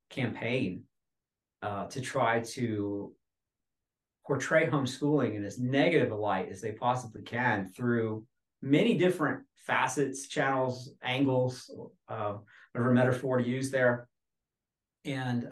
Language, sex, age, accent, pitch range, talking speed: English, male, 40-59, American, 105-125 Hz, 110 wpm